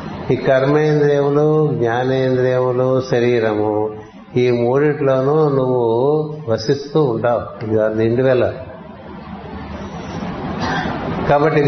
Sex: male